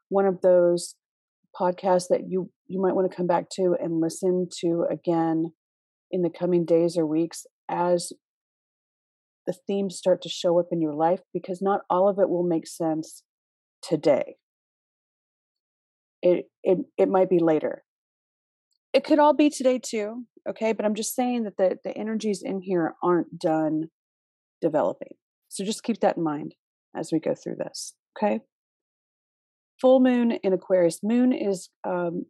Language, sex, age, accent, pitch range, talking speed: English, female, 40-59, American, 170-215 Hz, 160 wpm